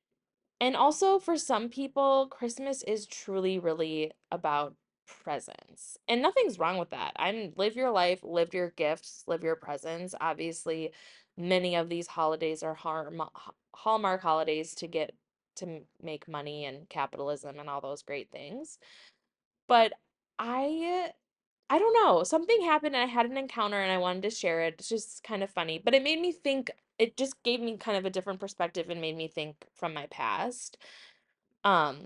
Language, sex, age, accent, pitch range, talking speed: English, female, 20-39, American, 165-245 Hz, 170 wpm